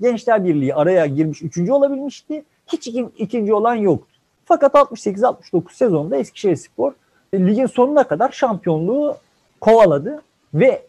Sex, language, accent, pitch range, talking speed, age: male, Turkish, native, 165-255 Hz, 110 wpm, 50-69